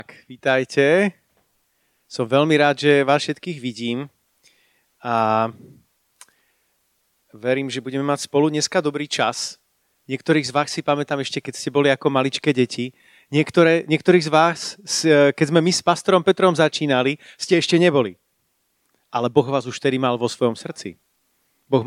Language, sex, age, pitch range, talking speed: Slovak, male, 30-49, 120-150 Hz, 150 wpm